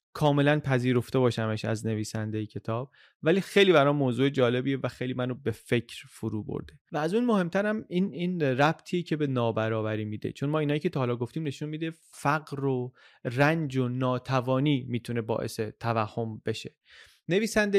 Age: 30-49